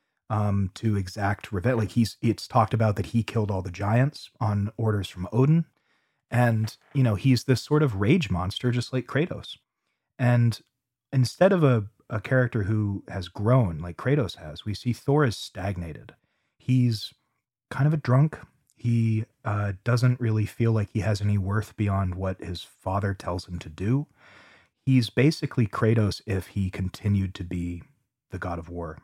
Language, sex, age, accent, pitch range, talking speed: English, male, 30-49, American, 100-125 Hz, 170 wpm